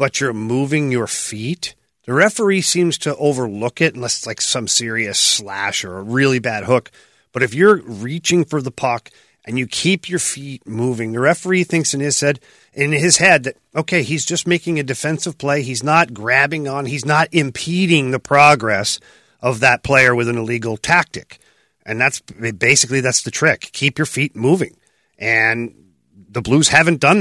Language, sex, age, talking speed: English, male, 40-59, 185 wpm